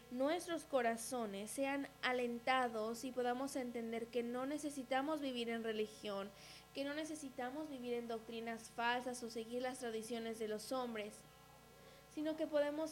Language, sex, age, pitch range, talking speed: English, female, 20-39, 230-280 Hz, 140 wpm